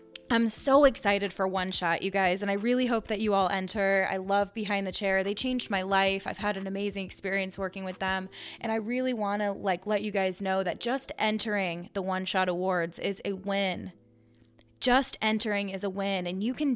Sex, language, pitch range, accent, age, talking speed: female, English, 195-235 Hz, American, 20-39, 220 wpm